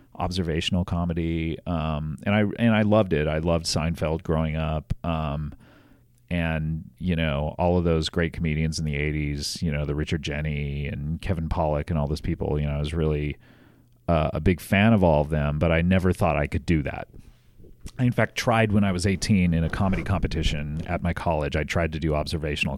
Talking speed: 210 wpm